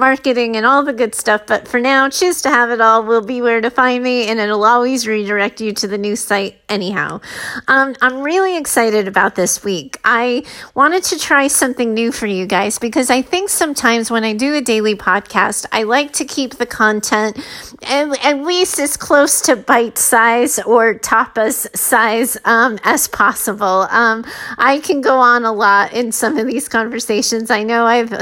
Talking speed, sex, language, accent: 195 wpm, female, English, American